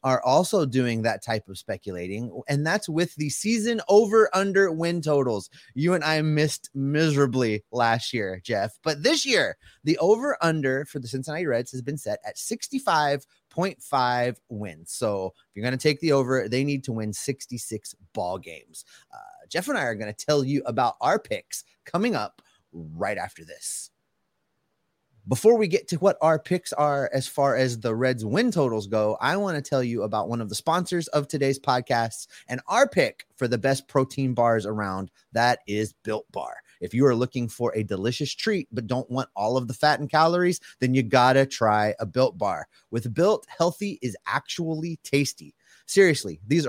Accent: American